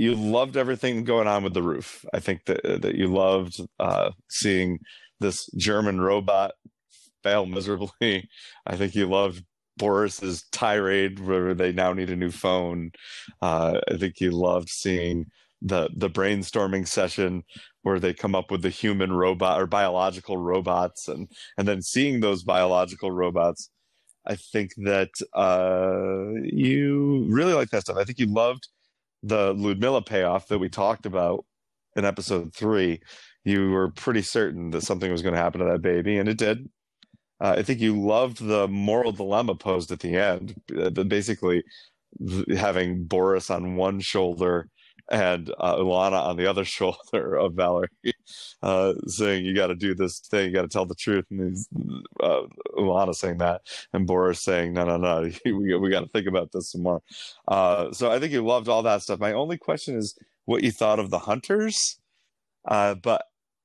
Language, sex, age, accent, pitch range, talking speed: English, male, 30-49, American, 90-105 Hz, 175 wpm